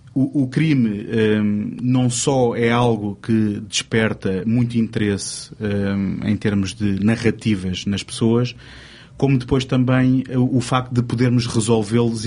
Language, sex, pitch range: Portuguese, male, 115-130 Hz